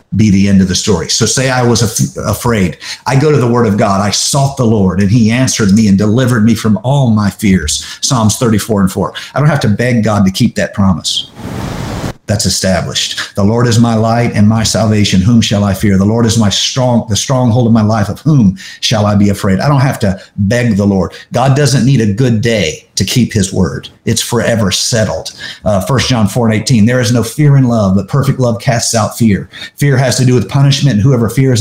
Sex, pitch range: male, 100-125 Hz